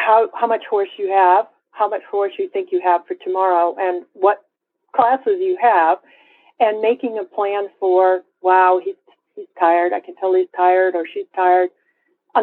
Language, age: English, 50-69